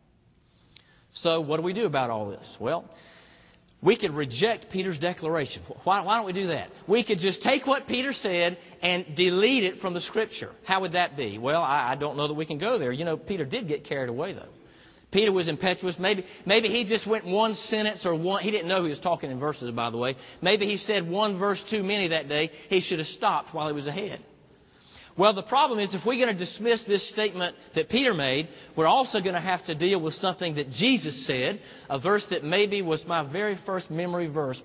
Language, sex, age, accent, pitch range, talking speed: English, male, 40-59, American, 160-205 Hz, 225 wpm